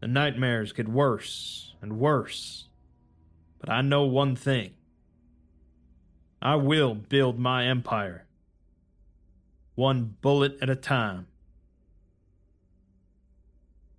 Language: English